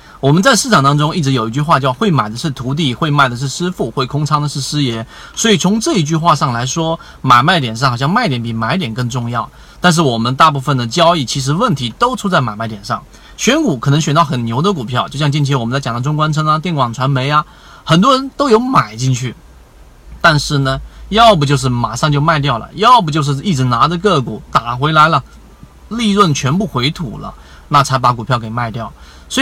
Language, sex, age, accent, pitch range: Chinese, male, 30-49, native, 130-180 Hz